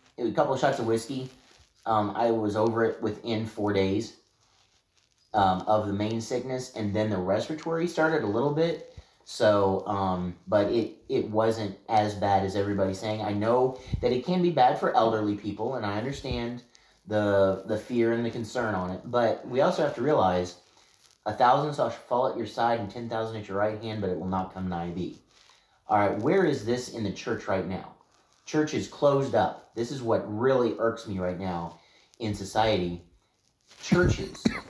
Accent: American